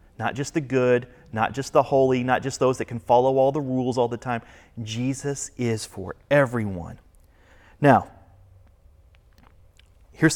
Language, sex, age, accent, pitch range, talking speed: English, male, 30-49, American, 115-175 Hz, 150 wpm